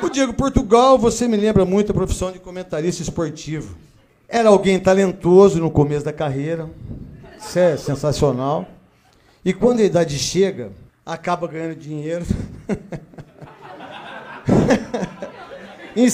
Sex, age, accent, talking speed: male, 50-69, Brazilian, 115 wpm